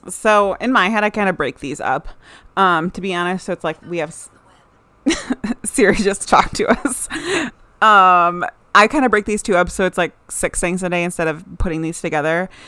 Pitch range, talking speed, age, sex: 175-220 Hz, 215 wpm, 30-49, female